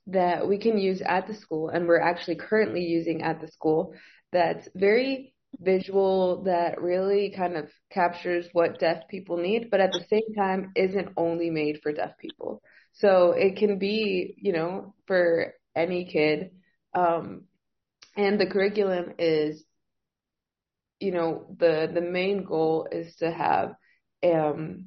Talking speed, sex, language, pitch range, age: 150 wpm, female, English, 165-190 Hz, 20-39